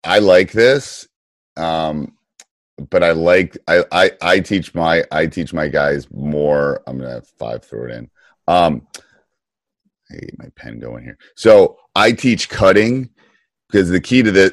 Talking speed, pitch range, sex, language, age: 165 wpm, 75-100 Hz, male, English, 30-49